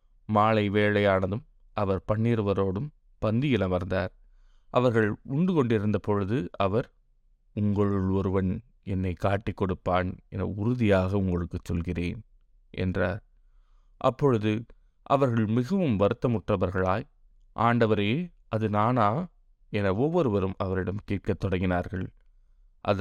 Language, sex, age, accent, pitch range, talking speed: Tamil, male, 20-39, native, 95-115 Hz, 80 wpm